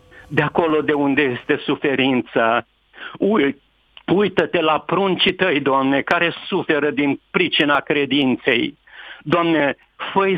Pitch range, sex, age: 145-185 Hz, male, 50-69